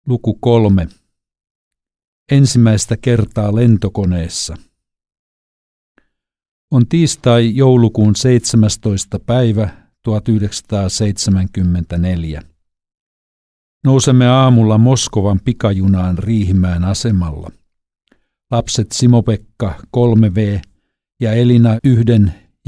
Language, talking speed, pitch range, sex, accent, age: Finnish, 60 wpm, 95-115 Hz, male, native, 50-69